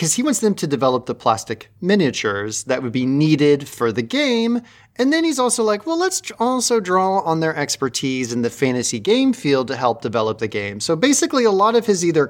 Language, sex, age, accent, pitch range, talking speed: English, male, 30-49, American, 120-185 Hz, 220 wpm